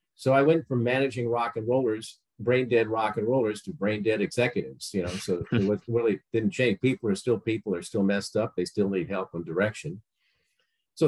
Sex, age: male, 50-69